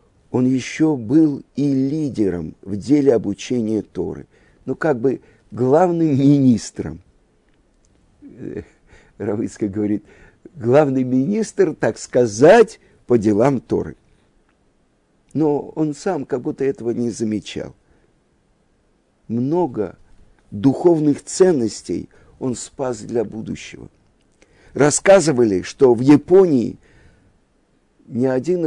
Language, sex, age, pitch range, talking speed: Russian, male, 50-69, 120-170 Hz, 90 wpm